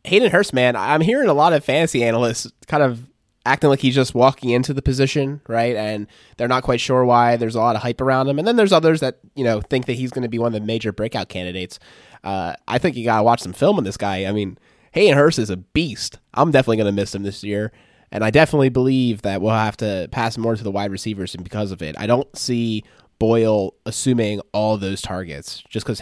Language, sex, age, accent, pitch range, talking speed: English, male, 20-39, American, 100-130 Hz, 250 wpm